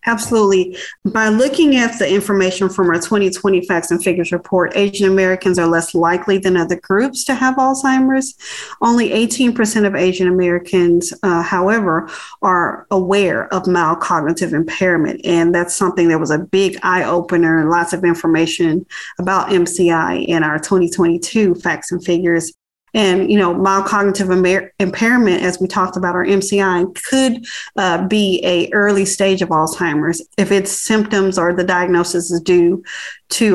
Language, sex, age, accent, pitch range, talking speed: English, female, 30-49, American, 175-205 Hz, 155 wpm